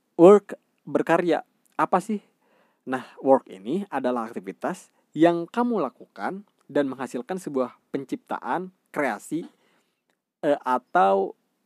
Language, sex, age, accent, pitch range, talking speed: Indonesian, male, 20-39, native, 120-170 Hz, 100 wpm